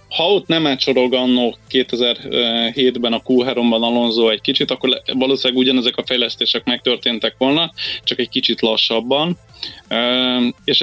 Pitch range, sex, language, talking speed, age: 115-125 Hz, male, Hungarian, 120 wpm, 20-39